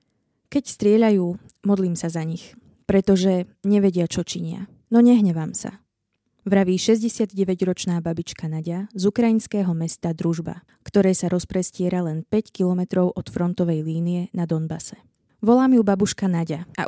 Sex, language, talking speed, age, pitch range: female, Slovak, 130 wpm, 20-39, 175-205 Hz